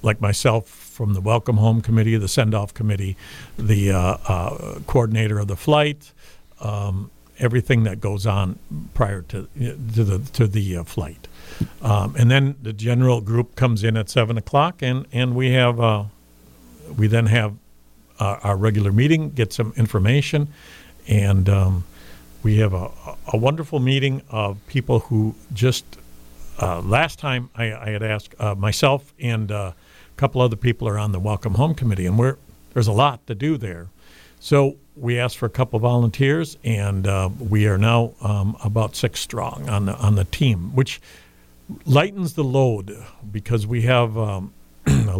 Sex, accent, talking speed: male, American, 170 wpm